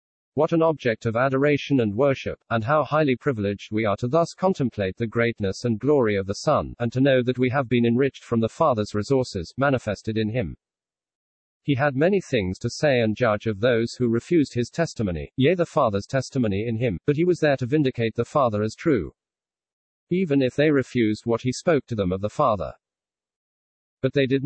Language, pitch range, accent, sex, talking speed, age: English, 110-140 Hz, British, male, 205 wpm, 50-69